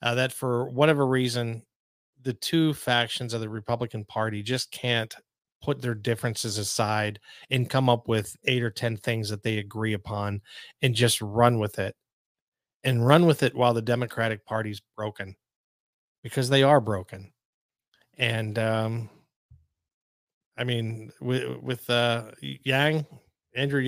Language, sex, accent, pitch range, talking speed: English, male, American, 110-130 Hz, 145 wpm